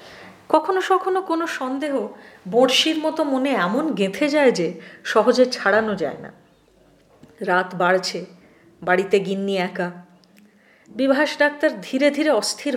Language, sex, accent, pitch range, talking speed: Hindi, female, native, 175-265 Hz, 95 wpm